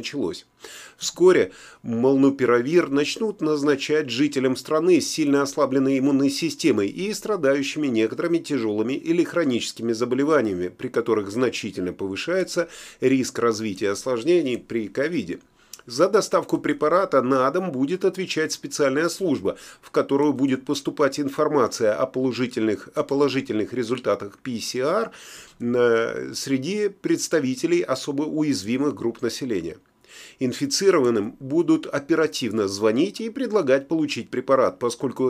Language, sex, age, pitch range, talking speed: Russian, male, 30-49, 125-160 Hz, 105 wpm